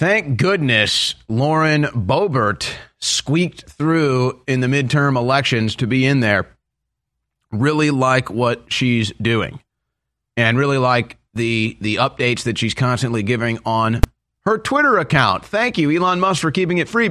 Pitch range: 120-155 Hz